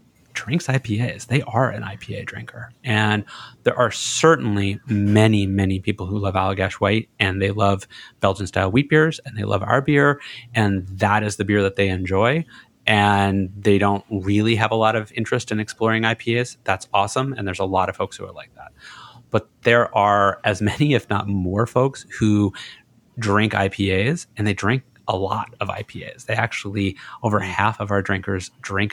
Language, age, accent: English, 30-49, American